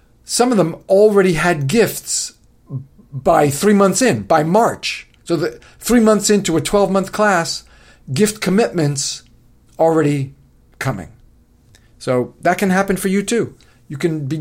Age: 50-69